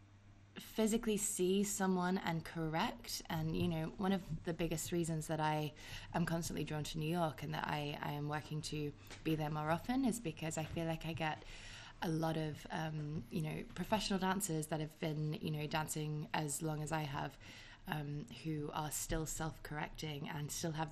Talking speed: 190 wpm